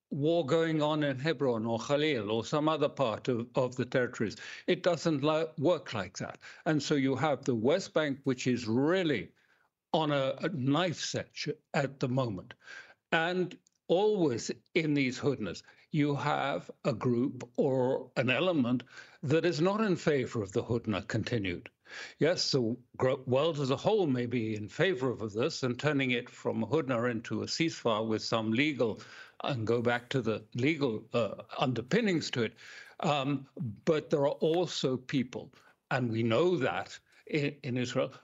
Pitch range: 125-155 Hz